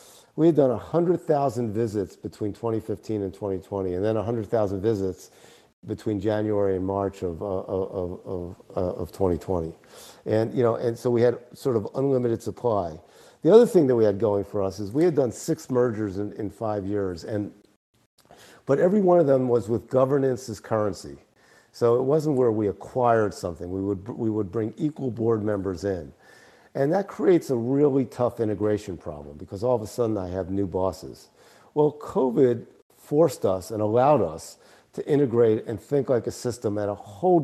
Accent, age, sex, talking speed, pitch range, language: American, 50-69, male, 185 wpm, 100-125 Hz, English